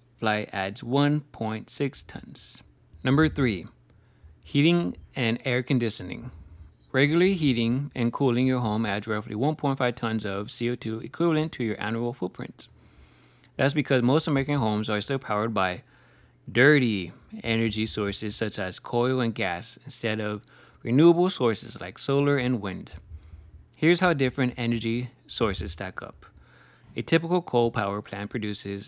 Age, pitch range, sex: 20-39, 105-135 Hz, male